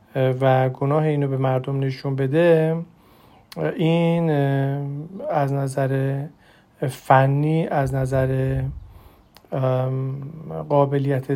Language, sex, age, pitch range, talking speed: Persian, male, 40-59, 130-155 Hz, 75 wpm